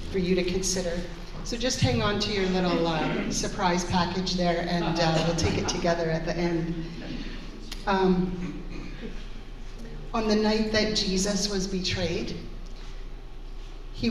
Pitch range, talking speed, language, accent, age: 170-210 Hz, 140 wpm, English, American, 40-59